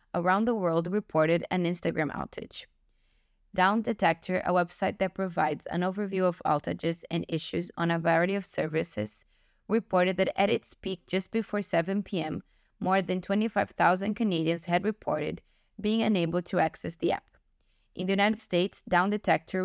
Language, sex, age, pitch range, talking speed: English, female, 20-39, 170-205 Hz, 155 wpm